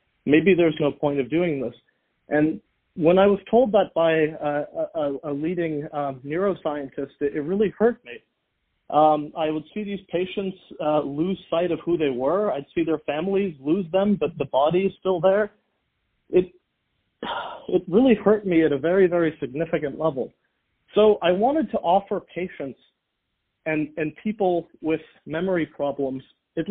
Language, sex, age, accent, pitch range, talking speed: English, male, 40-59, American, 150-195 Hz, 165 wpm